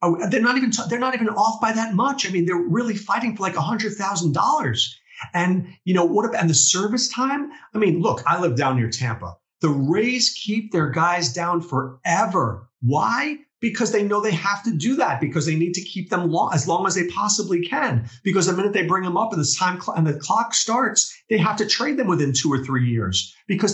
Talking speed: 225 wpm